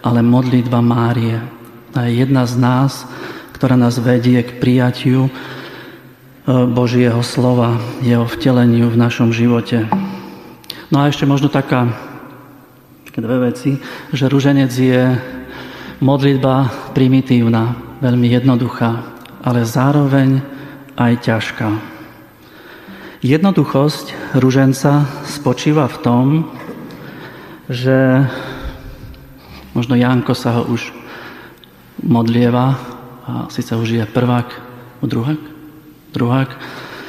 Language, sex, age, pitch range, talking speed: Slovak, male, 40-59, 120-140 Hz, 90 wpm